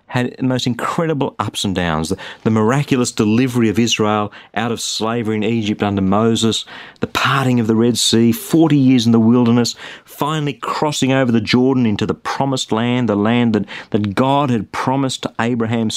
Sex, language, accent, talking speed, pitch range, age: male, English, Australian, 185 wpm, 110-135 Hz, 40-59